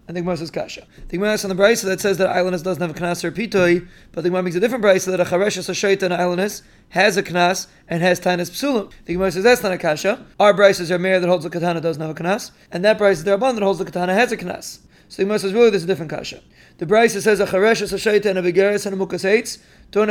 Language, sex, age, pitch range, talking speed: English, male, 30-49, 180-210 Hz, 310 wpm